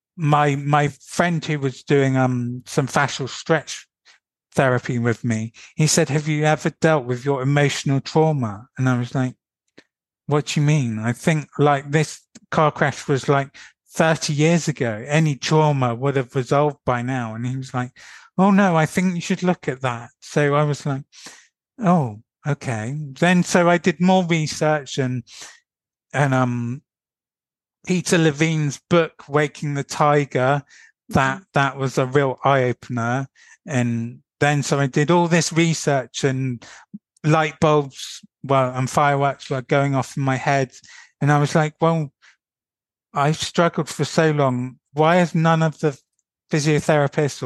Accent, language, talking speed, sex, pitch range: British, English, 160 wpm, male, 130-155 Hz